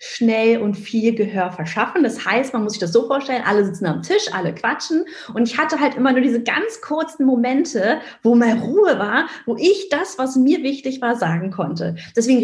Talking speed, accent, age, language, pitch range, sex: 205 wpm, German, 30-49, German, 190-255 Hz, female